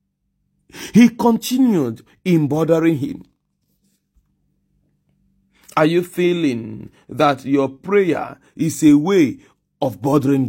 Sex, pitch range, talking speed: male, 145-195 Hz, 90 wpm